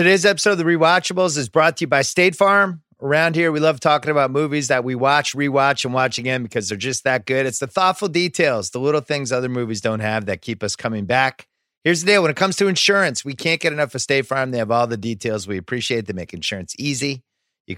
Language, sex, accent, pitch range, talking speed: English, male, American, 100-140 Hz, 250 wpm